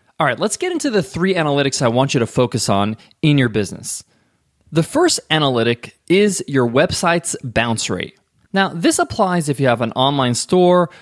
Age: 20-39